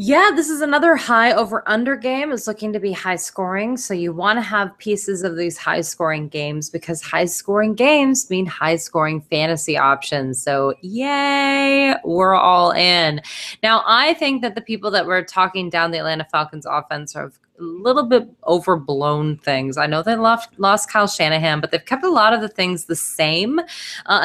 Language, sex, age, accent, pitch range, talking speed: English, female, 20-39, American, 155-230 Hz, 190 wpm